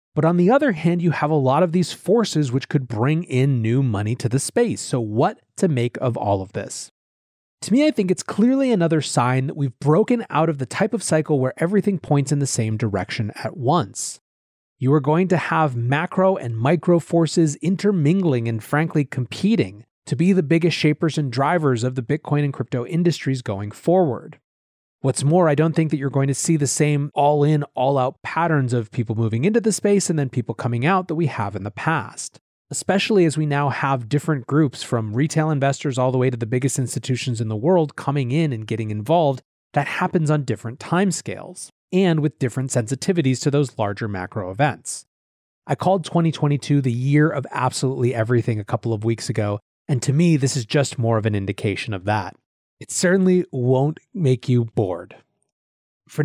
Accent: American